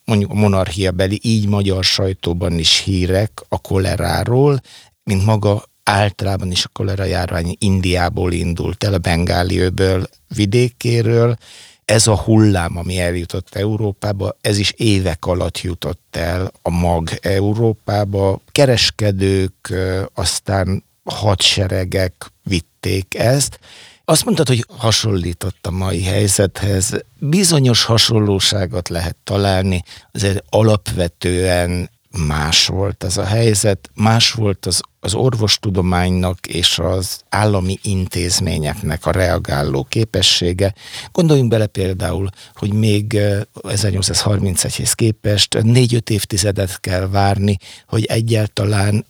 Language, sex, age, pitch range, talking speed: Hungarian, male, 60-79, 90-105 Hz, 105 wpm